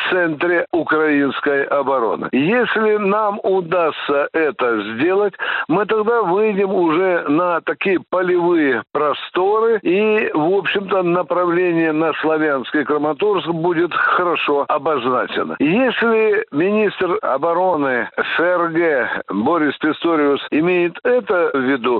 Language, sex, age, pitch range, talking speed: Russian, male, 60-79, 150-220 Hz, 100 wpm